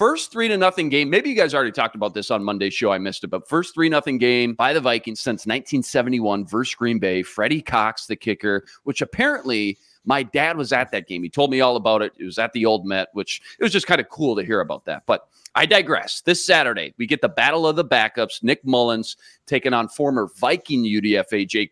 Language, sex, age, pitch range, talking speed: English, male, 30-49, 115-160 Hz, 240 wpm